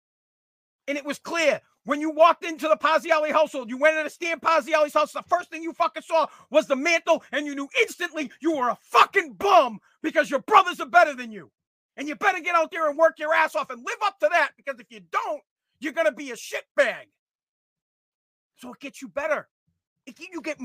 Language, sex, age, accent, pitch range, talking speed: English, male, 40-59, American, 210-310 Hz, 225 wpm